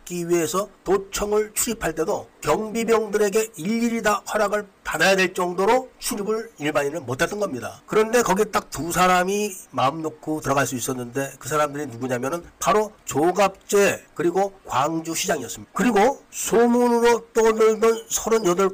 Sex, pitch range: male, 165-220 Hz